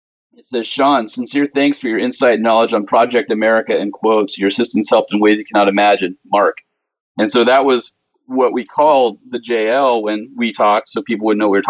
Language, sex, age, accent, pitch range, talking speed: English, male, 40-59, American, 110-130 Hz, 220 wpm